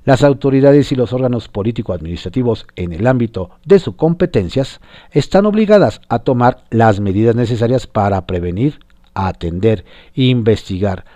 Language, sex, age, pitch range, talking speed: Spanish, male, 50-69, 95-140 Hz, 125 wpm